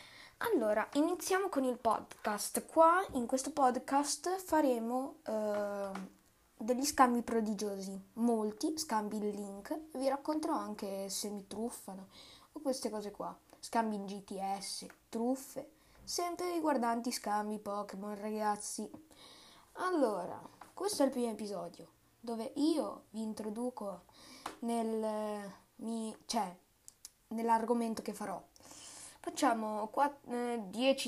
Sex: female